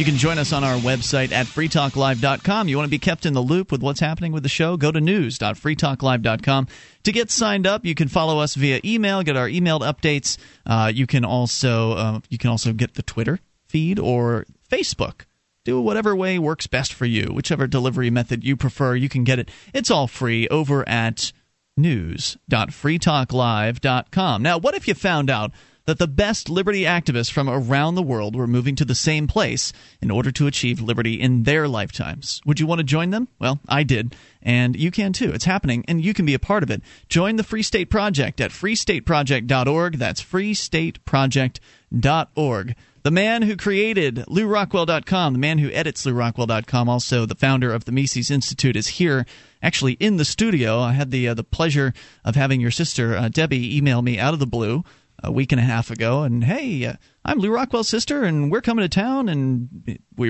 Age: 30-49